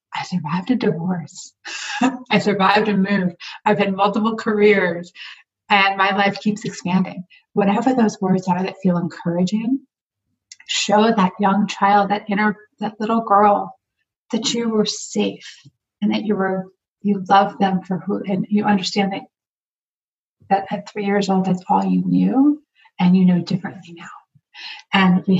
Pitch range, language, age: 180-210 Hz, English, 30-49